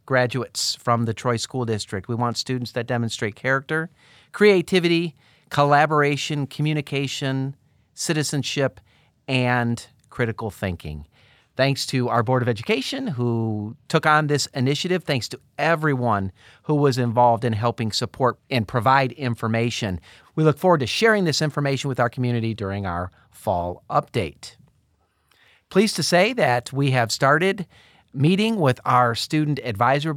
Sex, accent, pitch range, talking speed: male, American, 120-150 Hz, 135 wpm